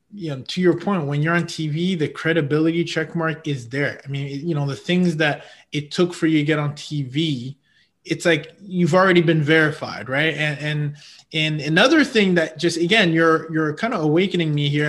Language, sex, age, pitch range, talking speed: English, male, 20-39, 150-180 Hz, 210 wpm